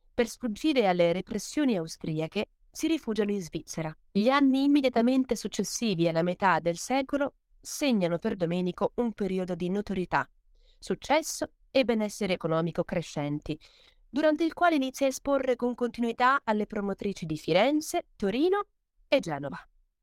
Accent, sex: native, female